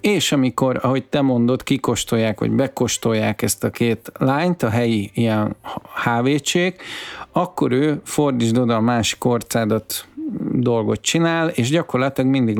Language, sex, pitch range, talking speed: Hungarian, male, 110-140 Hz, 135 wpm